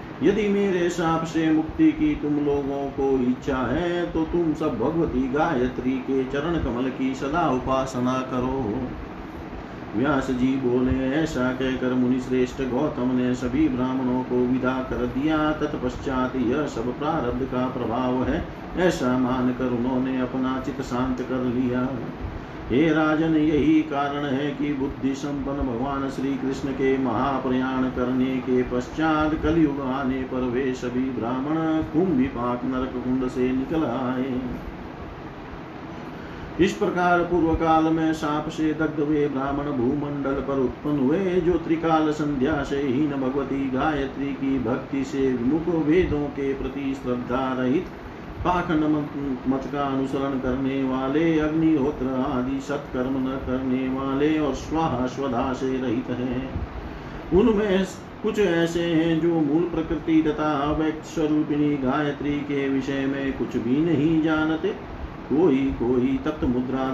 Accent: native